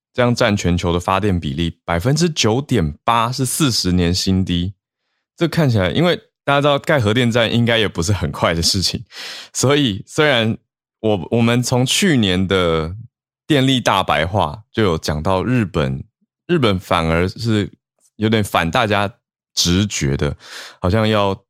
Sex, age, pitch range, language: male, 20-39, 85-115 Hz, Chinese